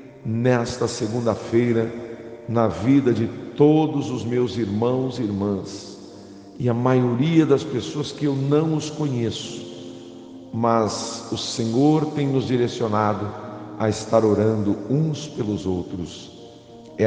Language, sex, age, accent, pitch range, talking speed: English, male, 60-79, Brazilian, 105-125 Hz, 120 wpm